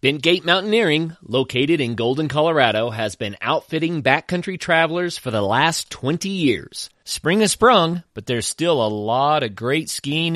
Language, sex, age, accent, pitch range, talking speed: English, male, 30-49, American, 115-165 Hz, 155 wpm